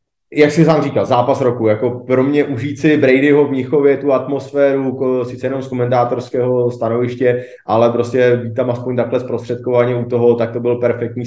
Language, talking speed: Czech, 175 wpm